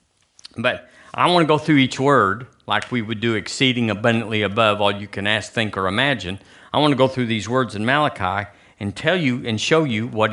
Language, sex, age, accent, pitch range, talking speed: English, male, 50-69, American, 100-140 Hz, 220 wpm